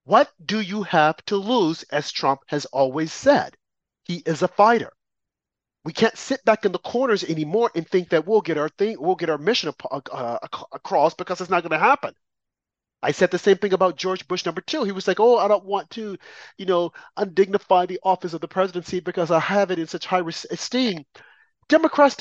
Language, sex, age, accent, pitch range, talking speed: English, male, 40-59, American, 170-230 Hz, 205 wpm